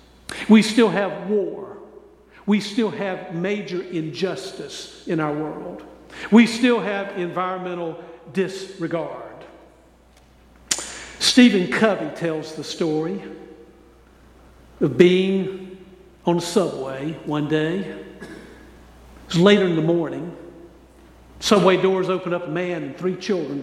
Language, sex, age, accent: English, male, 60-79, American